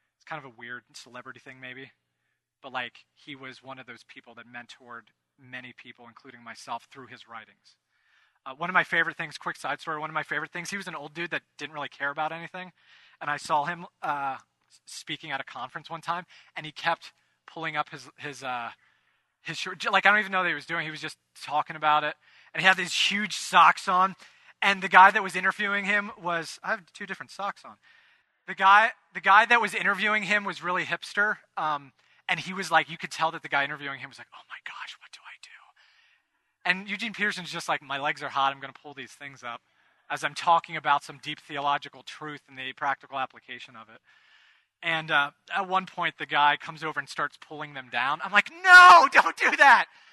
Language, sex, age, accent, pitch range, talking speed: English, male, 20-39, American, 145-195 Hz, 225 wpm